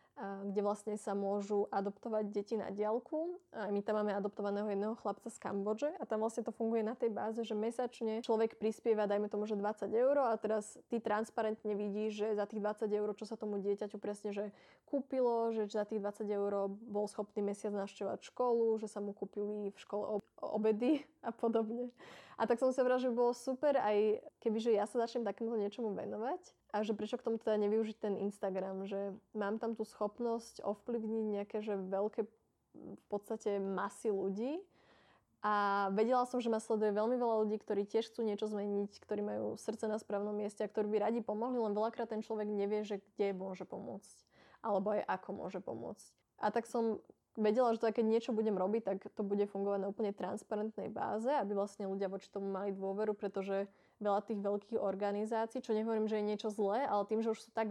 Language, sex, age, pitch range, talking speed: Slovak, female, 20-39, 200-225 Hz, 200 wpm